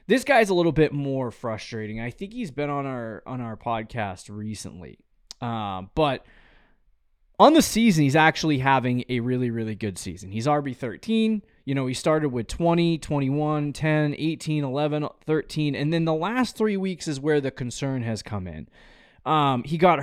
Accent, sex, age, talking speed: American, male, 20-39, 180 wpm